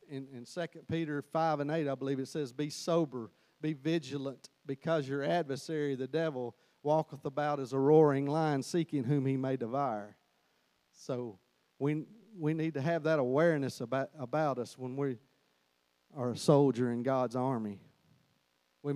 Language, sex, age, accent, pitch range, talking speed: English, male, 50-69, American, 105-150 Hz, 160 wpm